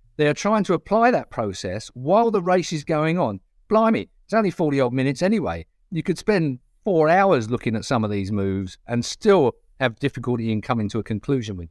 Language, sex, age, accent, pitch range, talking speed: English, male, 50-69, British, 110-165 Hz, 210 wpm